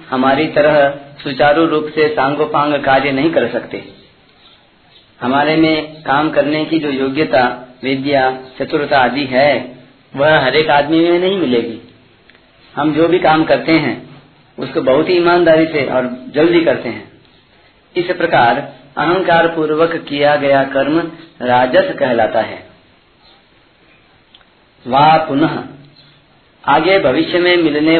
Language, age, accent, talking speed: Hindi, 40-59, native, 125 wpm